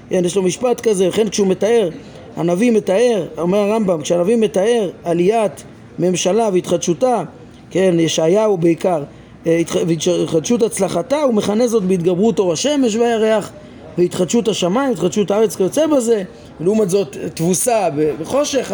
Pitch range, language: 175-245 Hz, Hebrew